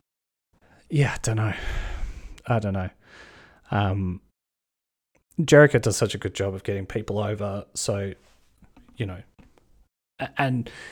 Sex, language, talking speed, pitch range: male, English, 120 wpm, 100-125 Hz